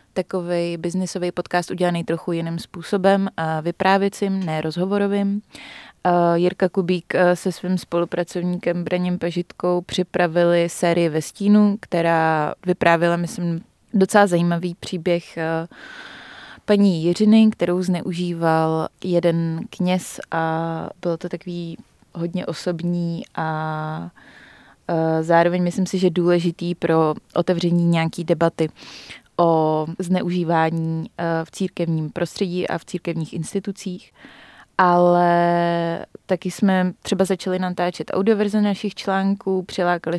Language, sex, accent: Czech, female, native